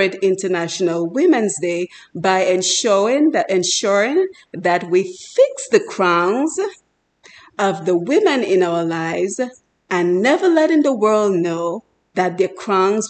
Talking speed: 125 wpm